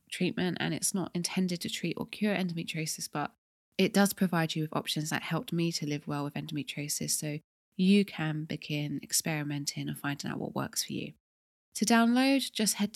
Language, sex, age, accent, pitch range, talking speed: English, female, 20-39, British, 150-205 Hz, 190 wpm